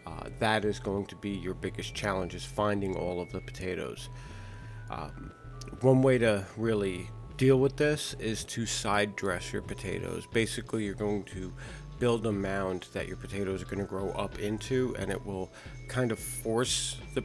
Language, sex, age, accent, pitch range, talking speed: English, male, 40-59, American, 95-110 Hz, 180 wpm